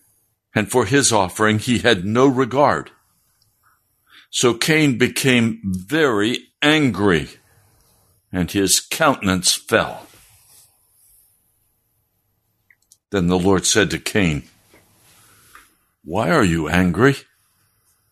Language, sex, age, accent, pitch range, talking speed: English, male, 60-79, American, 95-125 Hz, 90 wpm